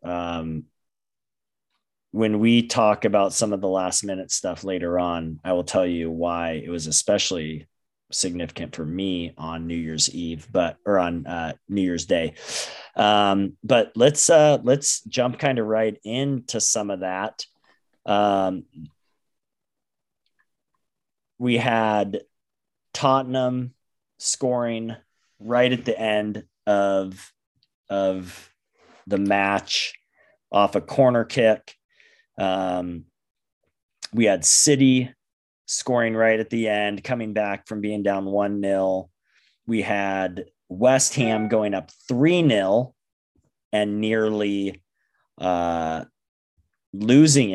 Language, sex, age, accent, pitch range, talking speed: English, male, 30-49, American, 95-120 Hz, 115 wpm